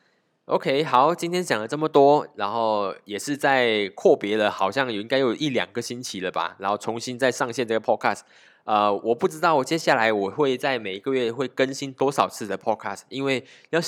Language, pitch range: Chinese, 105-135 Hz